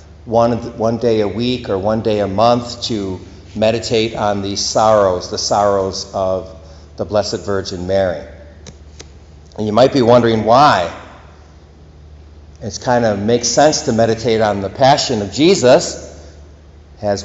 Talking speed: 145 wpm